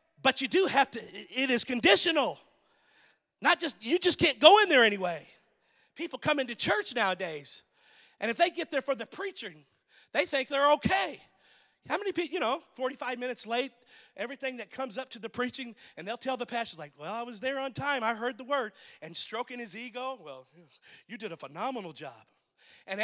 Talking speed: 200 wpm